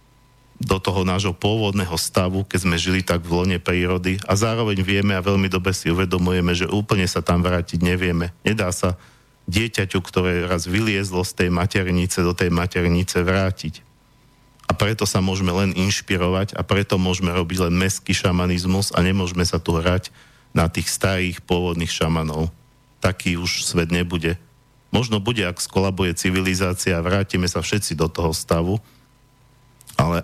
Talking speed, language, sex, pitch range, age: 155 wpm, Slovak, male, 90-120 Hz, 50-69